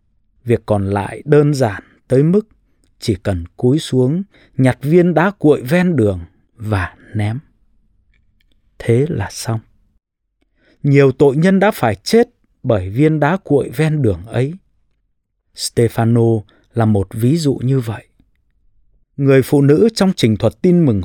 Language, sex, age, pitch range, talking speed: English, male, 20-39, 105-150 Hz, 145 wpm